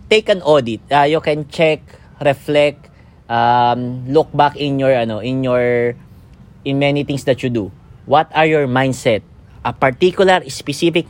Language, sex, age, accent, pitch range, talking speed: English, male, 20-39, Filipino, 130-170 Hz, 155 wpm